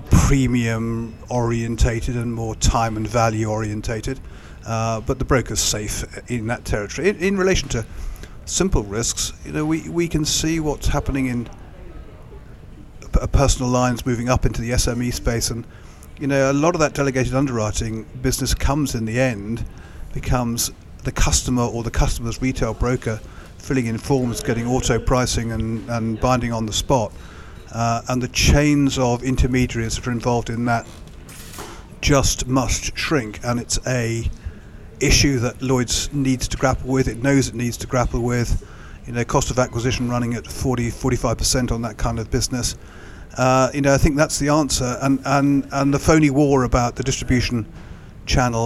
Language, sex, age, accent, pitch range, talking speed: English, male, 50-69, British, 110-130 Hz, 170 wpm